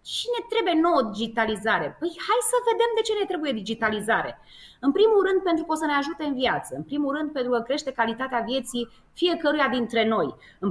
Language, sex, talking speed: Romanian, female, 205 wpm